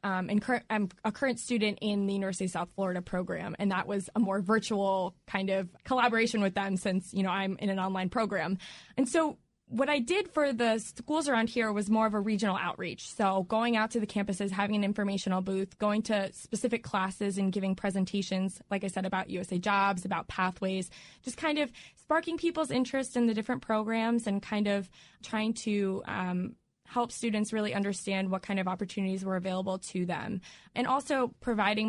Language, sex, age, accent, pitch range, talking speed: English, female, 20-39, American, 190-225 Hz, 200 wpm